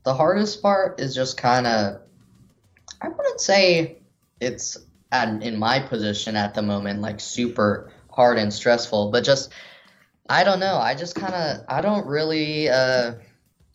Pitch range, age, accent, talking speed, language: 110-135 Hz, 10-29, American, 155 wpm, English